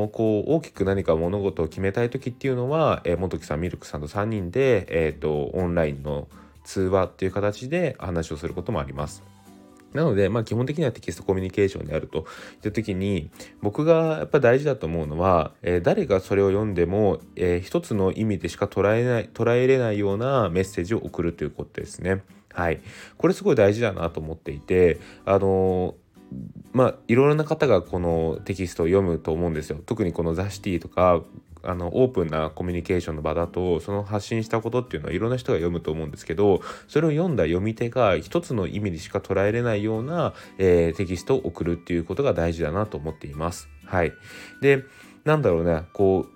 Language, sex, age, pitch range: Japanese, male, 20-39, 85-120 Hz